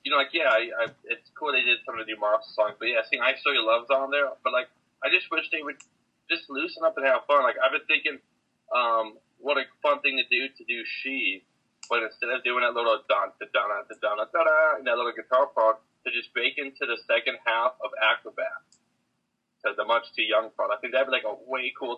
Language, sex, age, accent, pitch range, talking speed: English, male, 20-39, American, 110-145 Hz, 255 wpm